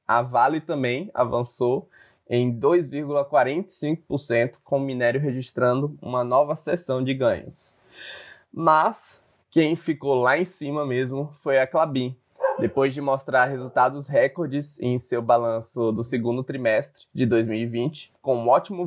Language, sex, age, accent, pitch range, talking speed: Portuguese, male, 20-39, Brazilian, 125-155 Hz, 130 wpm